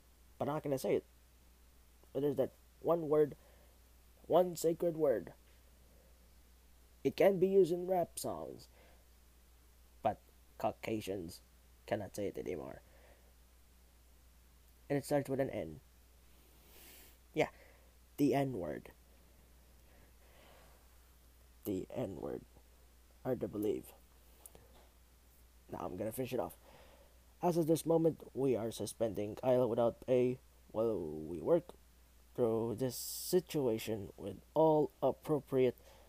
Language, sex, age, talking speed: English, male, 20-39, 115 wpm